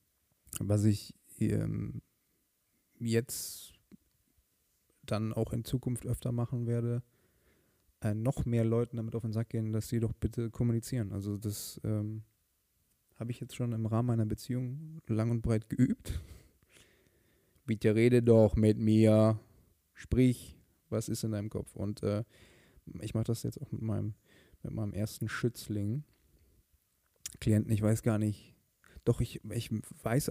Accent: German